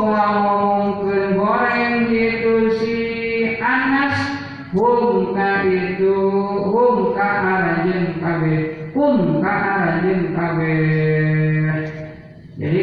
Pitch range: 170-210 Hz